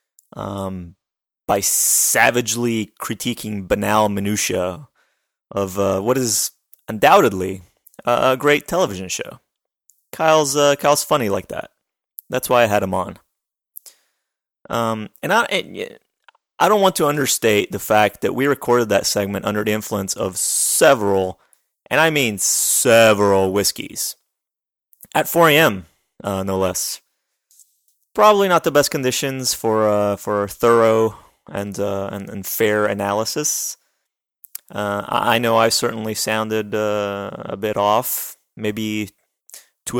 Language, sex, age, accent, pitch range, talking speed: English, male, 30-49, American, 100-135 Hz, 130 wpm